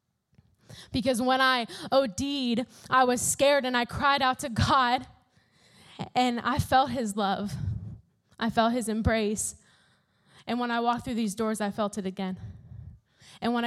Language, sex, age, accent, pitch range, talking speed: English, female, 10-29, American, 195-245 Hz, 155 wpm